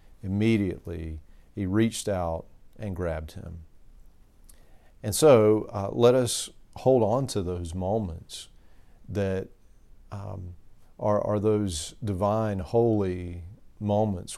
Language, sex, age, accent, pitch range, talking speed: English, male, 40-59, American, 90-110 Hz, 105 wpm